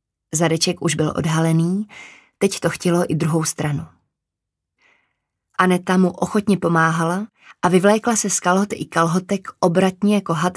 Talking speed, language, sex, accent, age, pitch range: 125 wpm, Czech, female, native, 20-39, 160-185 Hz